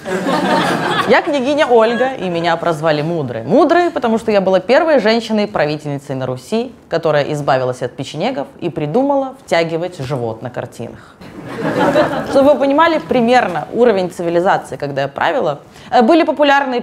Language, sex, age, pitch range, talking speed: Russian, female, 20-39, 190-265 Hz, 130 wpm